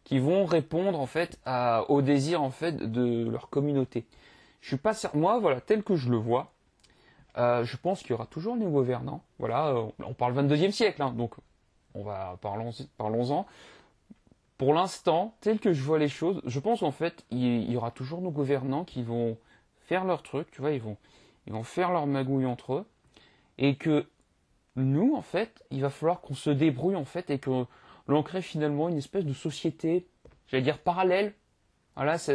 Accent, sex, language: French, male, French